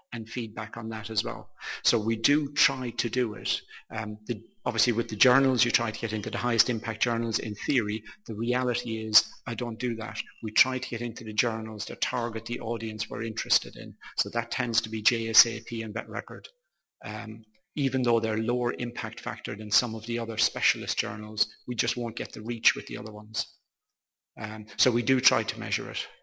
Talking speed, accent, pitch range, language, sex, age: 210 wpm, British, 110-125 Hz, English, male, 40-59